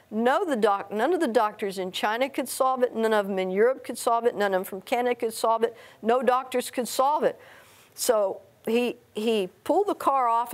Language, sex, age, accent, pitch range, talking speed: English, female, 50-69, American, 205-255 Hz, 230 wpm